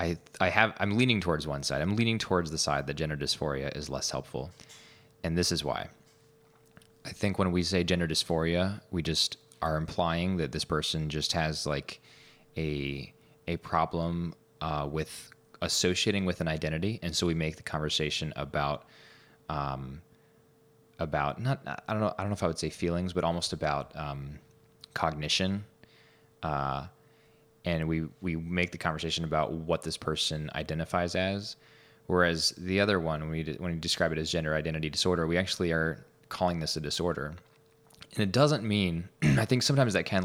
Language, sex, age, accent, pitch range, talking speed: English, male, 20-39, American, 80-90 Hz, 175 wpm